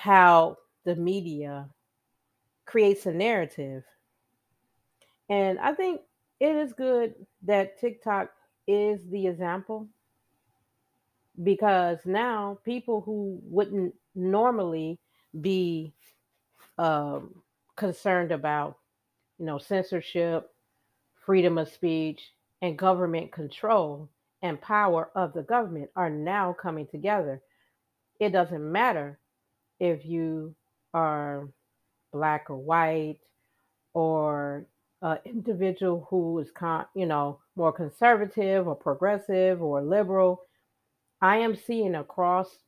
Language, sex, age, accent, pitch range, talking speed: English, female, 40-59, American, 155-195 Hz, 100 wpm